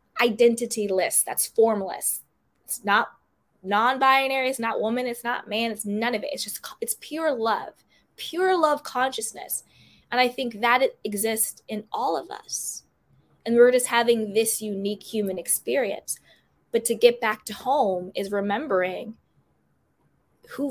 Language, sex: English, female